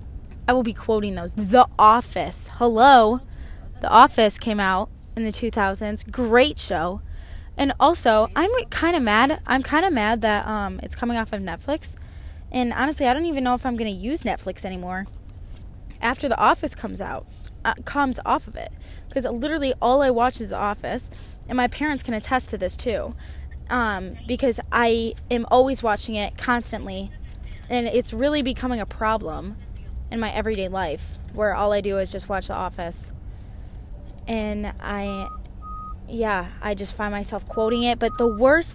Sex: female